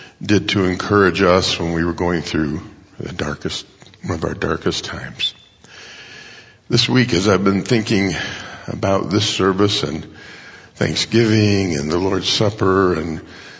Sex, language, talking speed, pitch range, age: male, English, 140 wpm, 90-110 Hz, 50-69